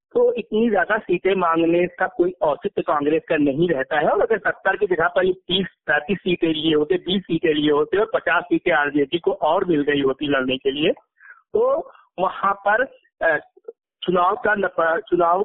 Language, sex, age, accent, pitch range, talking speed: Hindi, male, 50-69, native, 165-240 Hz, 175 wpm